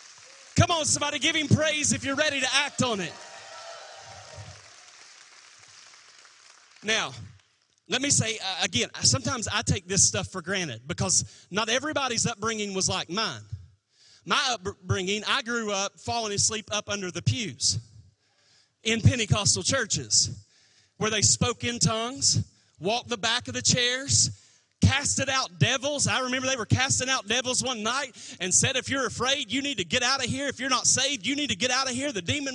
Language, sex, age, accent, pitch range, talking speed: English, male, 30-49, American, 170-270 Hz, 175 wpm